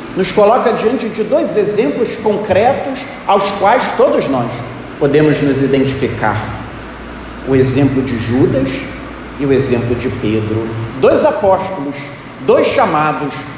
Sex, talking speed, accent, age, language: male, 120 wpm, Brazilian, 40-59, Portuguese